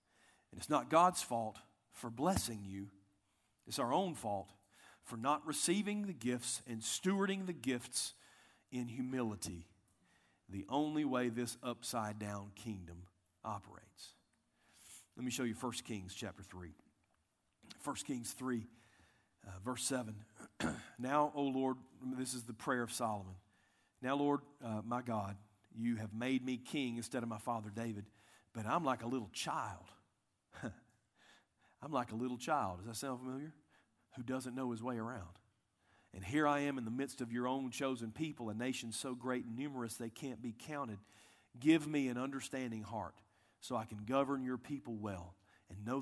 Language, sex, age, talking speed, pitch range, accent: English, male, 40-59, 160 wpm, 105-130 Hz, American